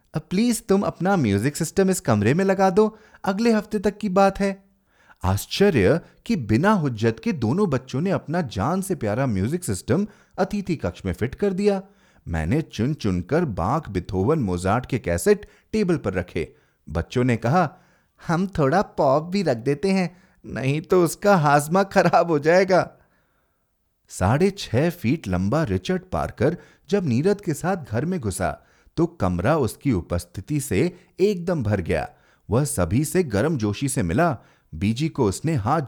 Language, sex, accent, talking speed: Hindi, male, native, 160 wpm